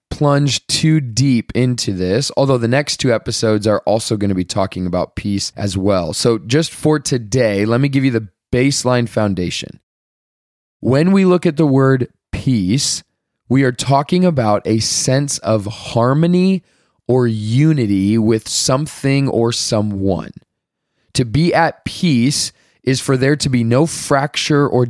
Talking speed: 155 wpm